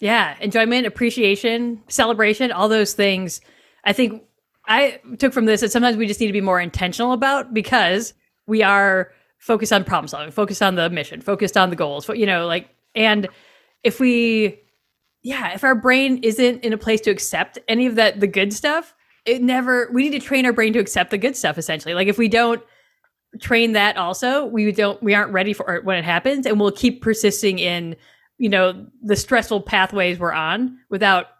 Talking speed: 195 wpm